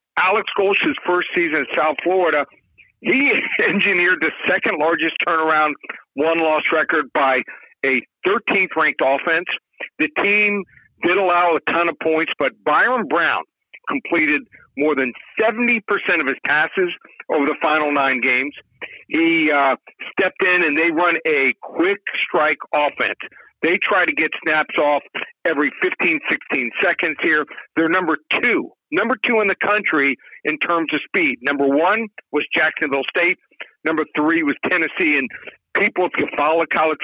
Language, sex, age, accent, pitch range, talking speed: English, male, 50-69, American, 145-185 Hz, 145 wpm